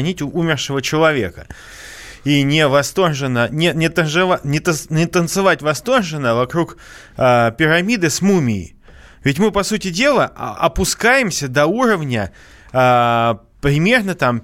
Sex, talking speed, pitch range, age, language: male, 120 wpm, 130-185 Hz, 20-39, Russian